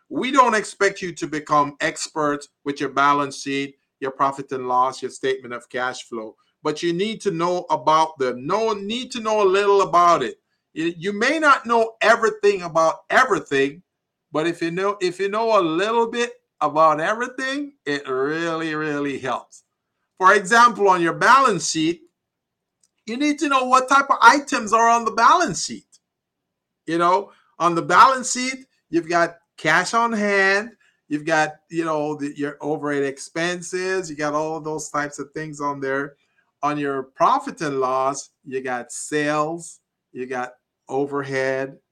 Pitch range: 140-205 Hz